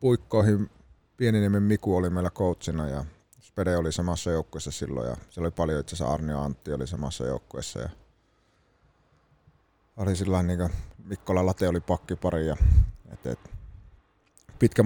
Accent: native